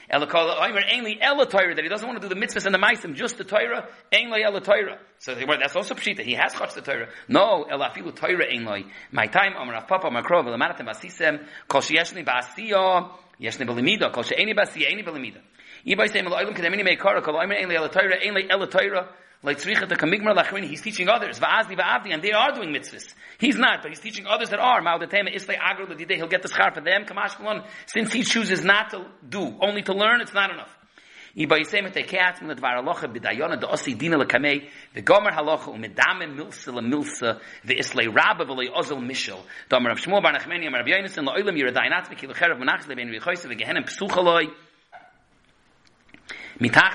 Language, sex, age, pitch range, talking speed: English, male, 40-59, 170-205 Hz, 135 wpm